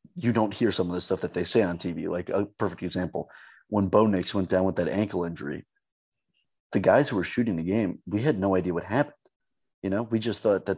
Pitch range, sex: 90-110 Hz, male